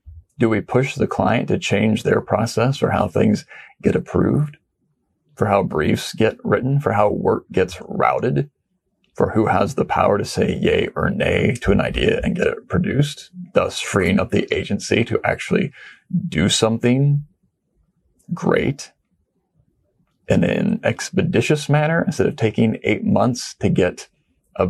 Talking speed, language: 155 wpm, English